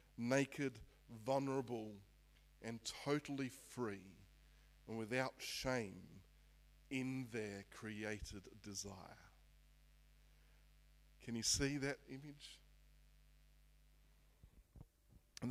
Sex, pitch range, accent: male, 110-145 Hz, Australian